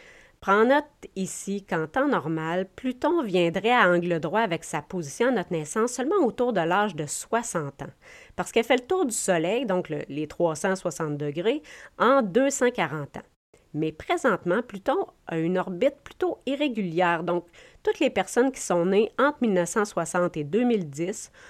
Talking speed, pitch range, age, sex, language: 160 wpm, 165-240 Hz, 40-59, female, French